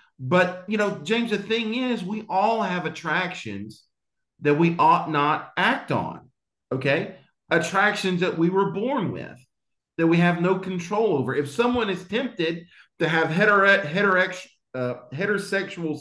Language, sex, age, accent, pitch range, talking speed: English, male, 40-59, American, 145-200 Hz, 140 wpm